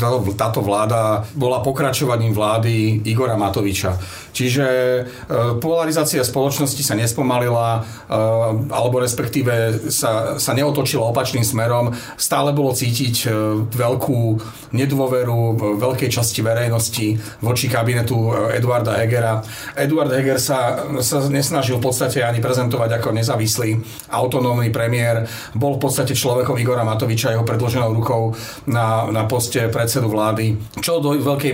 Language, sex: Slovak, male